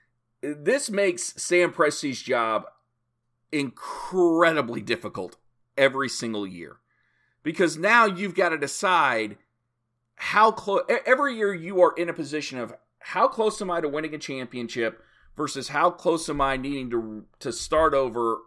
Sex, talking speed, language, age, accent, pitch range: male, 145 wpm, English, 40-59, American, 125-175 Hz